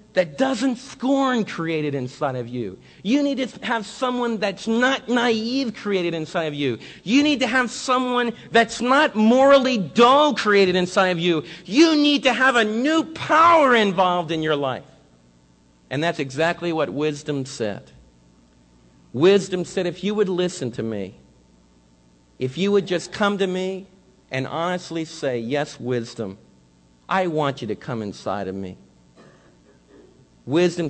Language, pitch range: English, 115-190 Hz